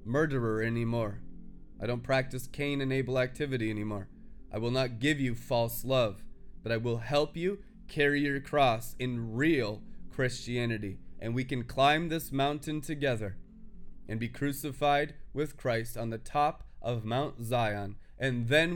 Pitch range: 110-140 Hz